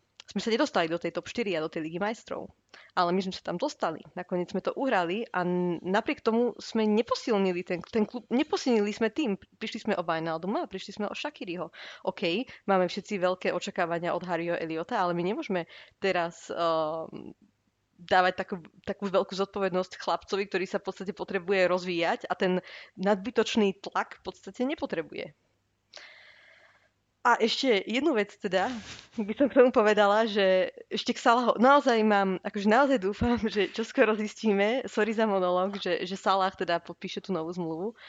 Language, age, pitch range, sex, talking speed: Slovak, 20-39, 180-225 Hz, female, 170 wpm